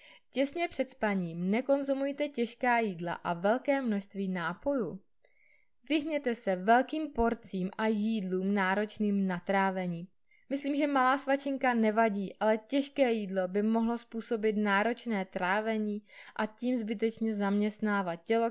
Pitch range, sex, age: 195-250 Hz, female, 20-39